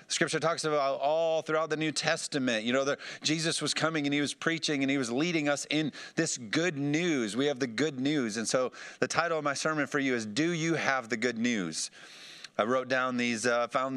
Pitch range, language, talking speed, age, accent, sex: 125-155 Hz, English, 230 wpm, 40-59, American, male